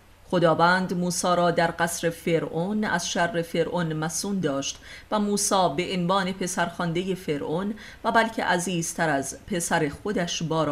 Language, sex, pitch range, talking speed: Persian, female, 145-190 Hz, 140 wpm